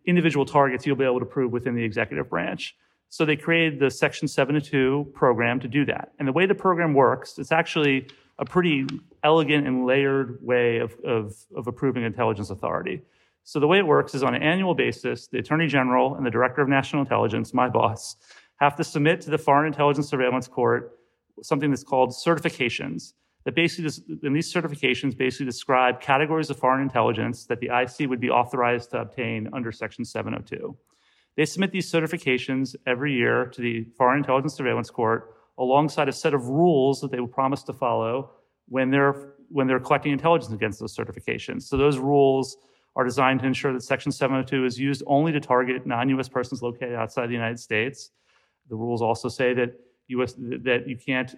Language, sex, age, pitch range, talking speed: English, male, 30-49, 125-145 Hz, 185 wpm